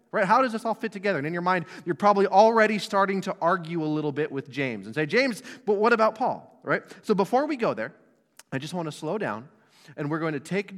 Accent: American